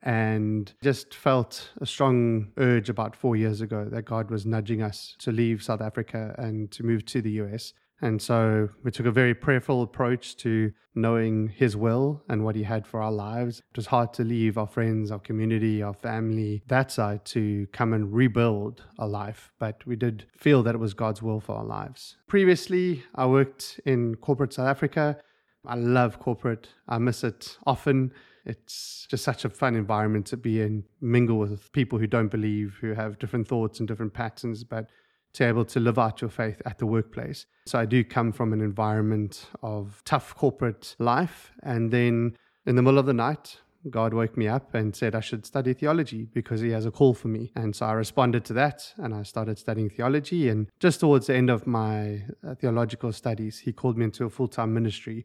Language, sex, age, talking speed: English, male, 20-39, 205 wpm